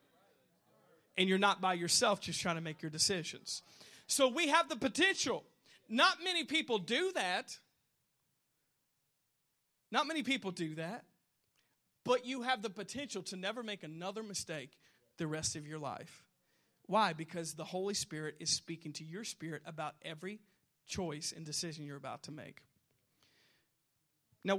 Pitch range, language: 160-220 Hz, English